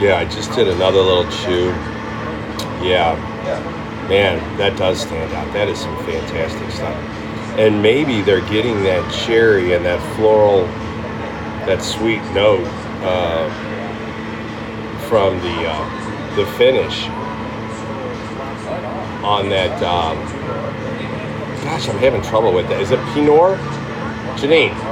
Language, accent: English, American